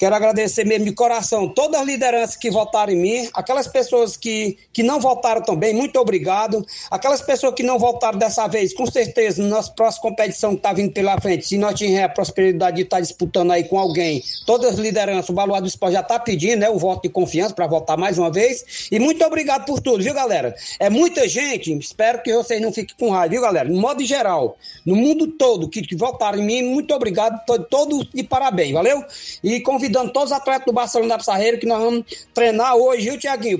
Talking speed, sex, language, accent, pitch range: 220 wpm, male, Portuguese, Brazilian, 205-260 Hz